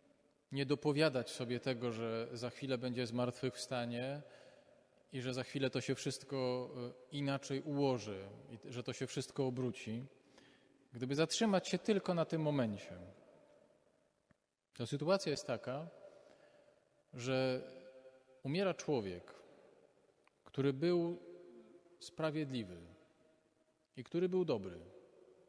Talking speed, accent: 105 wpm, native